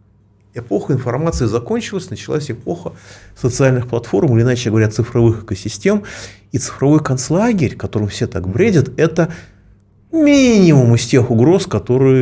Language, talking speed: Russian, 120 wpm